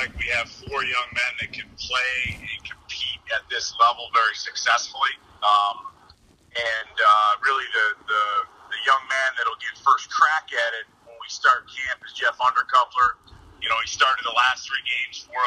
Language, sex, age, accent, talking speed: English, male, 30-49, American, 180 wpm